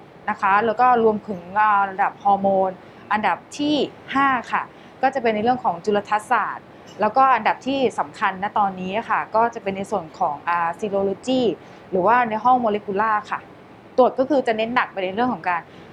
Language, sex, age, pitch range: English, female, 20-39, 195-250 Hz